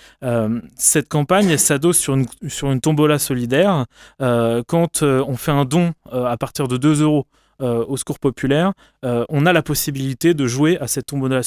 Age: 20-39